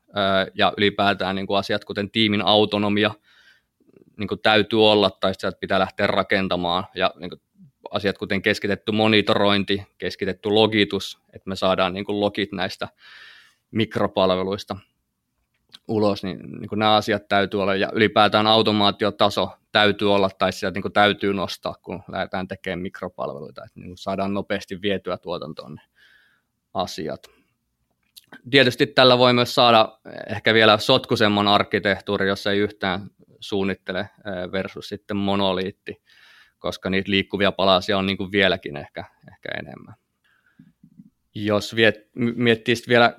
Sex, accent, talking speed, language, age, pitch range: male, native, 125 wpm, Finnish, 20-39, 100-110 Hz